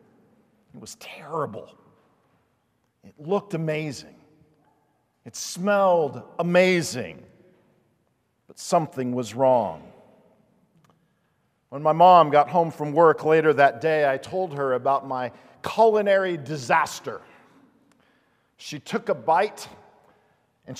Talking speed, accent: 100 wpm, American